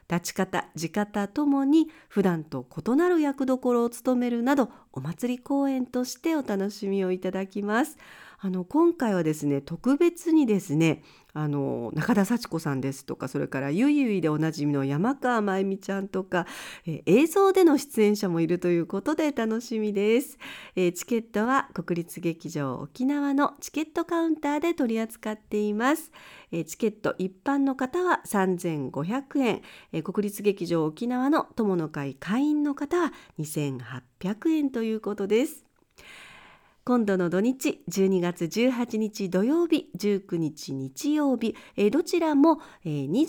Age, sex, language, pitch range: 50-69, female, Japanese, 175-275 Hz